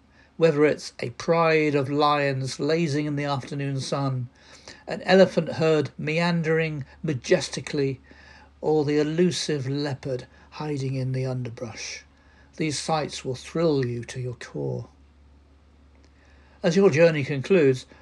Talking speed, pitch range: 120 wpm, 120-160 Hz